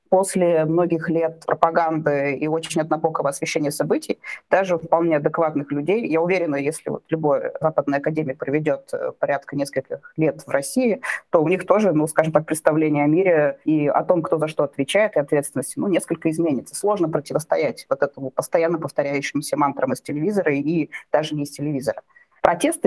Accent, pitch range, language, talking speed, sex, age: native, 155-190 Hz, Russian, 165 wpm, female, 20-39